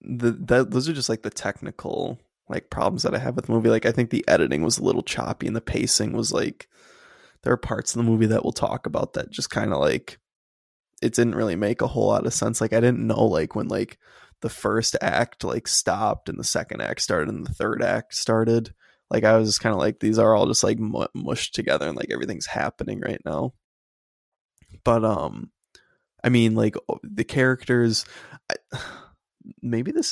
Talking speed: 210 wpm